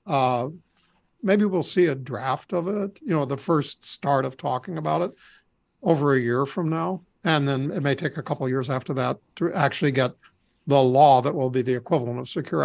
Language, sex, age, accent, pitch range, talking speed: English, male, 50-69, American, 135-170 Hz, 215 wpm